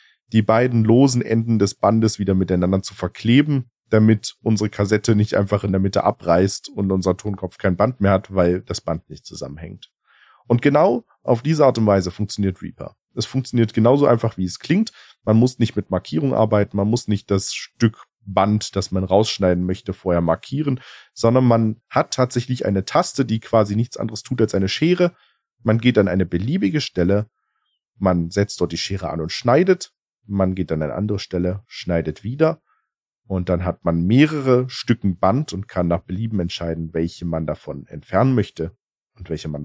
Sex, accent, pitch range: male, German, 95-125 Hz